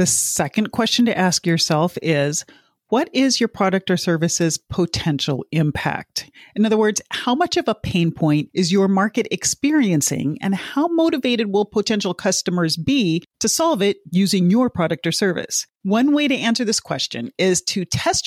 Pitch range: 165-230 Hz